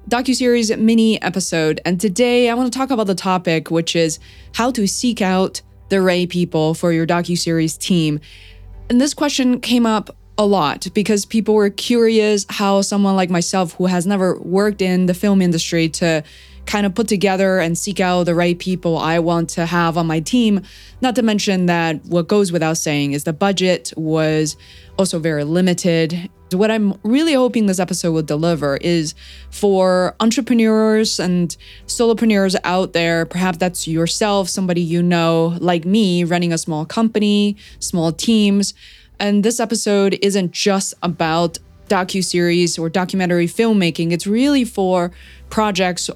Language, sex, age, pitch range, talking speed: English, female, 20-39, 170-210 Hz, 160 wpm